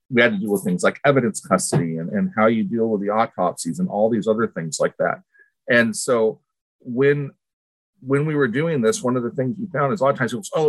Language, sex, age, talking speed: English, male, 40-59, 260 wpm